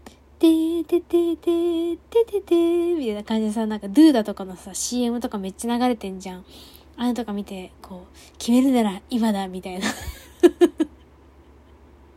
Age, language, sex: 20-39, Japanese, female